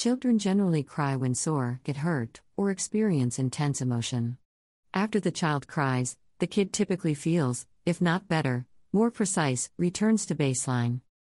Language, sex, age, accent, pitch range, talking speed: English, female, 50-69, American, 130-160 Hz, 145 wpm